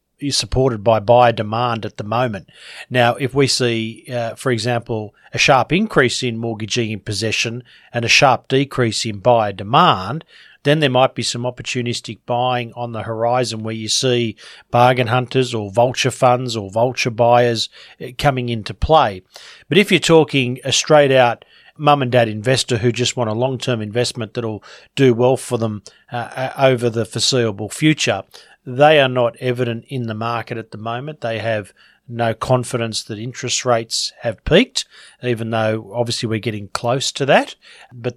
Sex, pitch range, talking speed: male, 115-130 Hz, 170 wpm